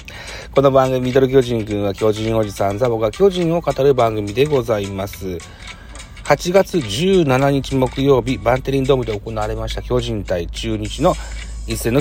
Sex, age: male, 40-59